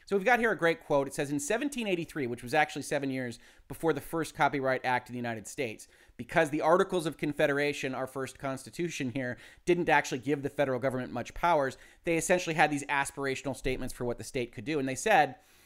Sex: male